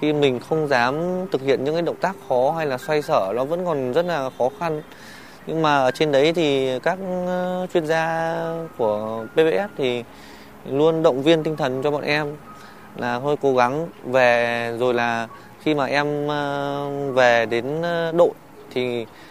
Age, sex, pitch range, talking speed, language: 20-39, male, 130-165 Hz, 175 wpm, Vietnamese